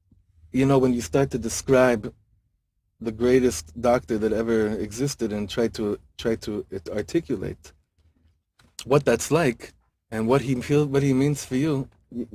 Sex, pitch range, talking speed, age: male, 90-135 Hz, 155 wpm, 30-49